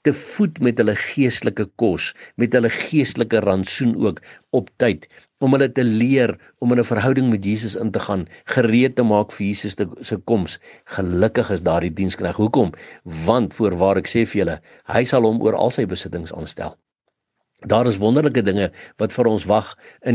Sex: male